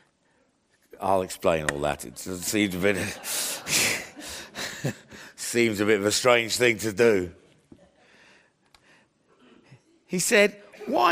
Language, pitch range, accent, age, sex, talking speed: English, 125-175 Hz, British, 50-69, male, 110 wpm